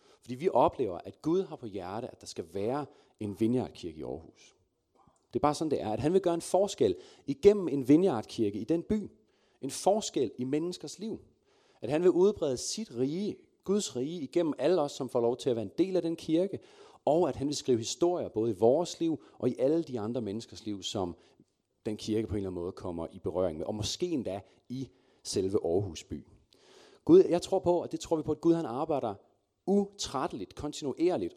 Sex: male